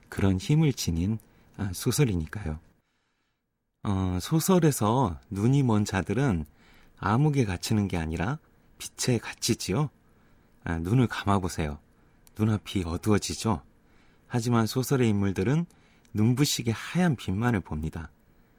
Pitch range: 90-125 Hz